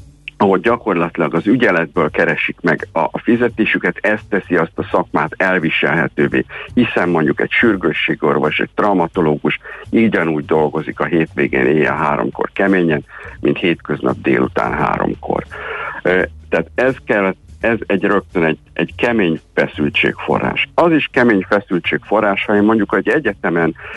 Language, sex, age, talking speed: Hungarian, male, 60-79, 130 wpm